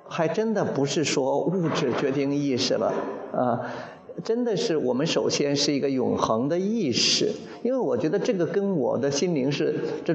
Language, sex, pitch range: Chinese, male, 140-195 Hz